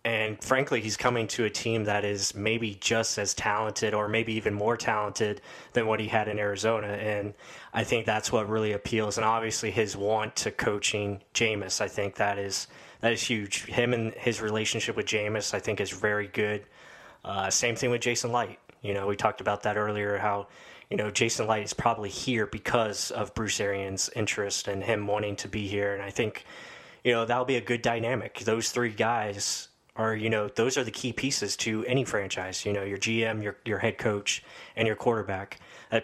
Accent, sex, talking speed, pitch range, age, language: American, male, 205 wpm, 100-115 Hz, 20-39, English